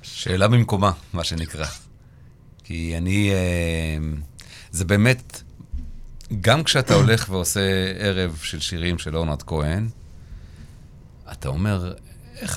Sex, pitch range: male, 80-120 Hz